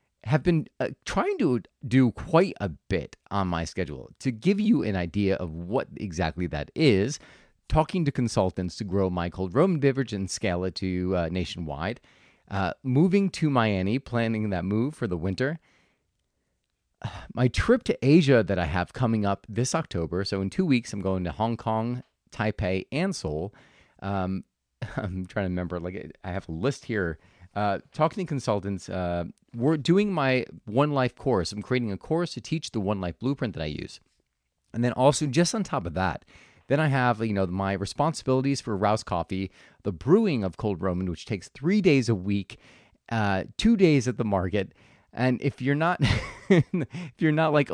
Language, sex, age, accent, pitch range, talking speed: English, male, 40-59, American, 95-140 Hz, 185 wpm